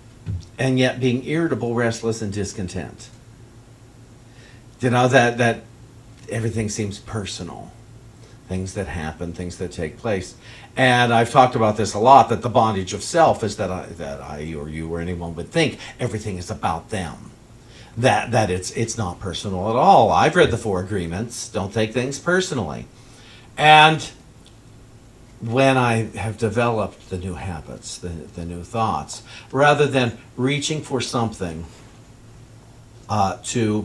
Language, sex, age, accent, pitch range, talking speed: English, male, 50-69, American, 90-120 Hz, 150 wpm